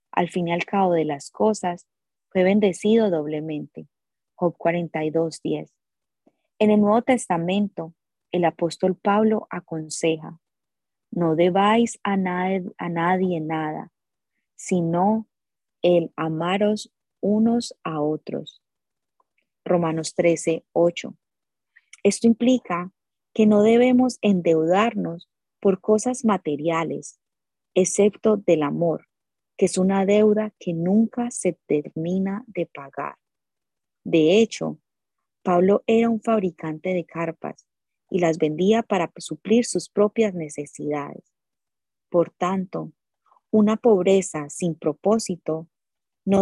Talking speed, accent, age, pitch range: 105 wpm, Colombian, 20-39, 160-210 Hz